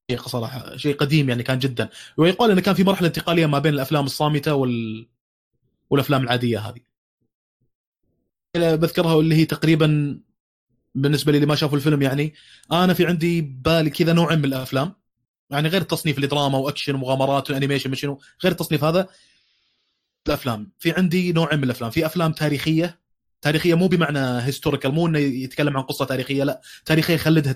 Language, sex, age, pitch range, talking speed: Arabic, male, 20-39, 135-165 Hz, 160 wpm